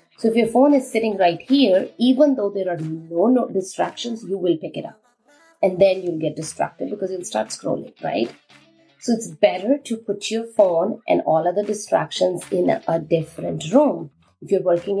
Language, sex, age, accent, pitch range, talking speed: English, female, 30-49, Indian, 170-225 Hz, 190 wpm